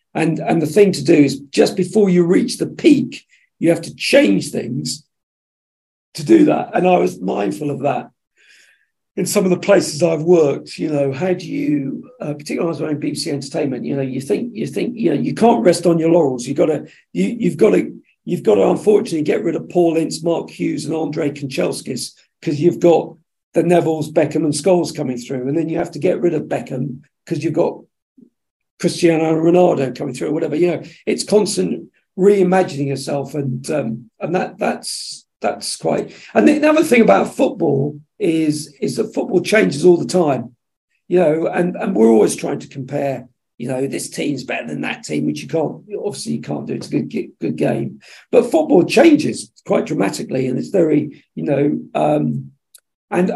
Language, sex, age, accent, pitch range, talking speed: English, male, 50-69, British, 145-185 Hz, 205 wpm